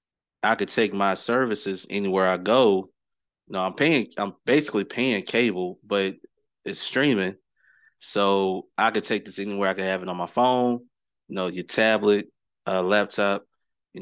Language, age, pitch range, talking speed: English, 20-39, 95-105 Hz, 175 wpm